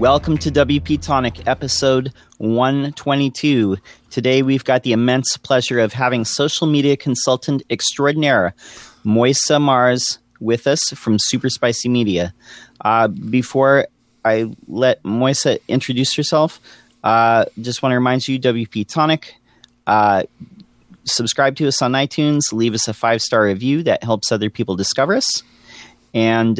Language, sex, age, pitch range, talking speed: English, male, 30-49, 110-135 Hz, 135 wpm